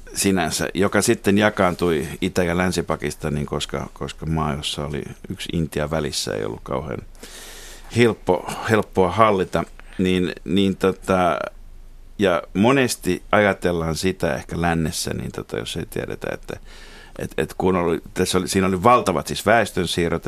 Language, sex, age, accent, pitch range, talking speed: Finnish, male, 50-69, native, 80-100 Hz, 135 wpm